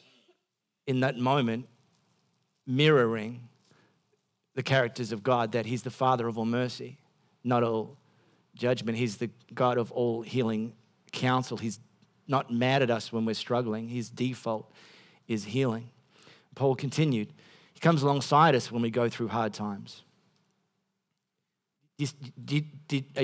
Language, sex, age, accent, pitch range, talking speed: English, male, 40-59, Australian, 120-160 Hz, 130 wpm